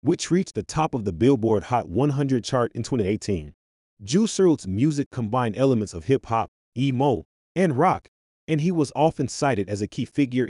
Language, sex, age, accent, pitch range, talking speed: English, male, 30-49, American, 95-140 Hz, 185 wpm